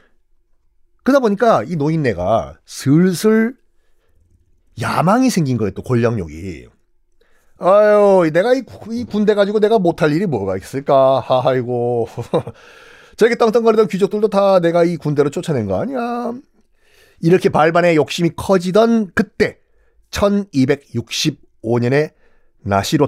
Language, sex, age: Korean, male, 40-59